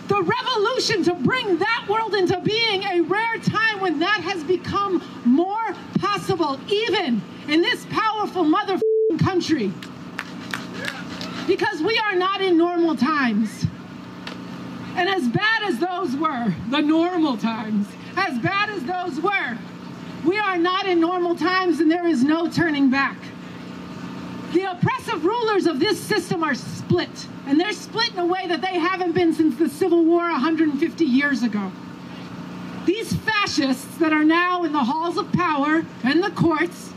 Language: English